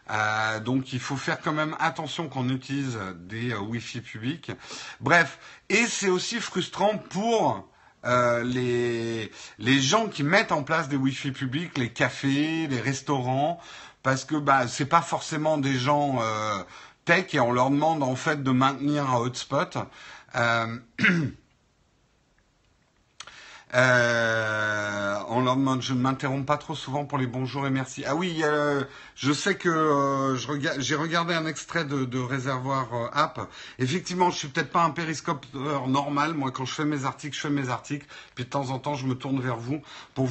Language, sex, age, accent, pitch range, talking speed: French, male, 50-69, French, 125-155 Hz, 175 wpm